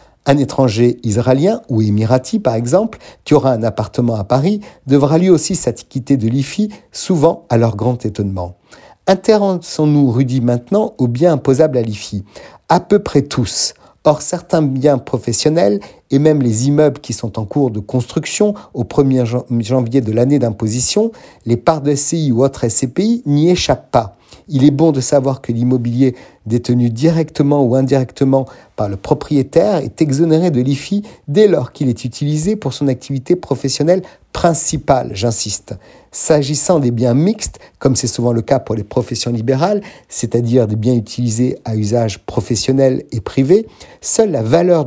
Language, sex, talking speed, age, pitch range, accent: French, male, 160 wpm, 50-69, 120-160 Hz, French